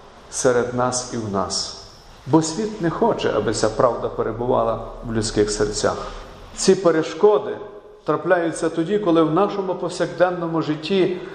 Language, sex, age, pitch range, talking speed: Ukrainian, male, 50-69, 115-160 Hz, 130 wpm